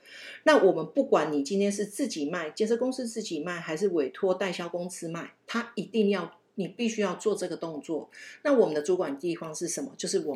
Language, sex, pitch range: Chinese, female, 170-225 Hz